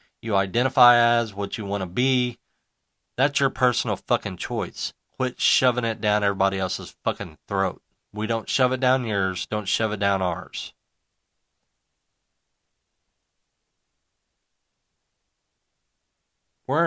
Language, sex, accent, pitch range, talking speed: English, male, American, 95-120 Hz, 115 wpm